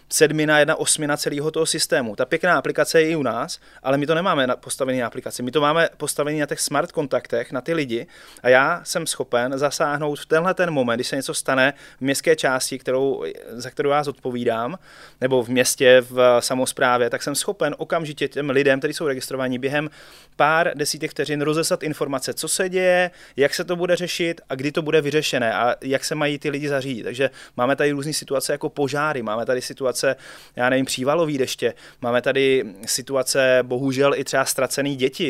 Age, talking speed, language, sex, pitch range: 30-49, 195 wpm, Czech, male, 130-155 Hz